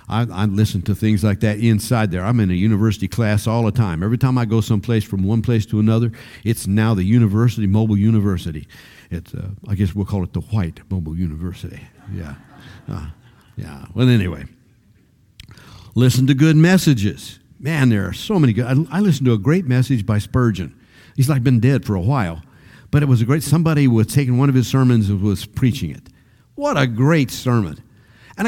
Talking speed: 200 wpm